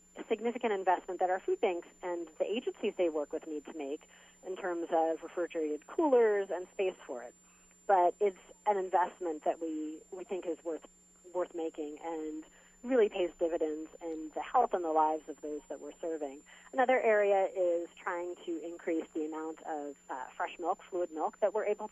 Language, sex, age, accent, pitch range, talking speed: English, female, 30-49, American, 155-190 Hz, 185 wpm